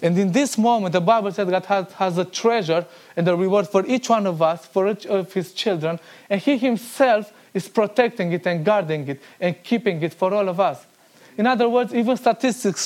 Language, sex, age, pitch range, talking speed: English, male, 20-39, 165-215 Hz, 215 wpm